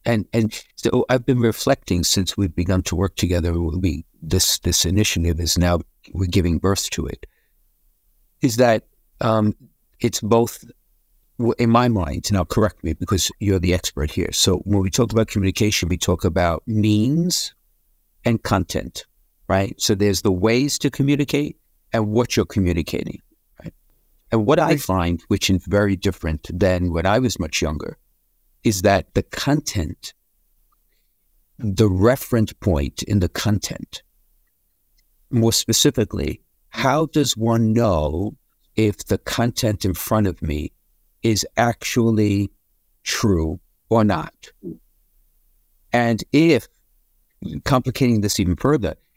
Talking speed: 135 wpm